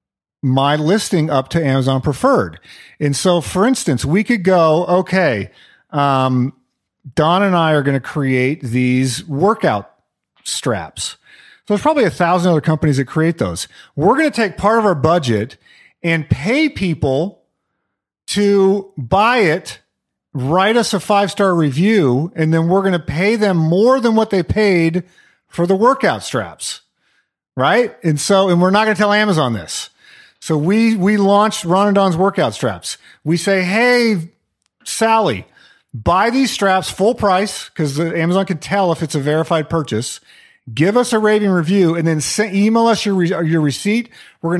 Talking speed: 165 wpm